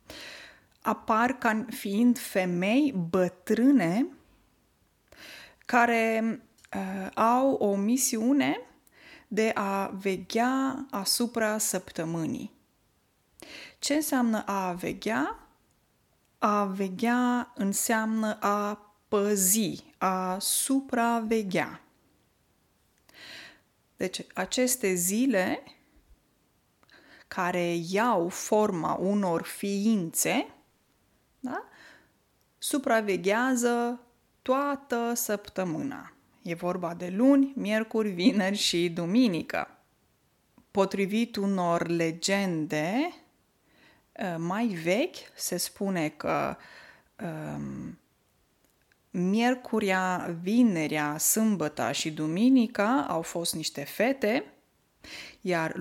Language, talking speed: Romanian, 65 wpm